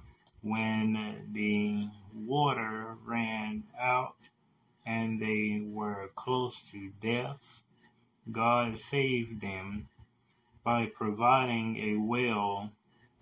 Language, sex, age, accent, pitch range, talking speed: English, male, 20-39, American, 110-125 Hz, 80 wpm